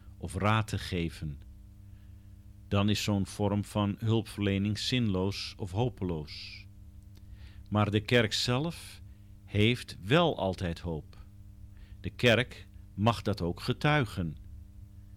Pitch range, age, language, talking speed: 95-110 Hz, 50-69, Dutch, 105 wpm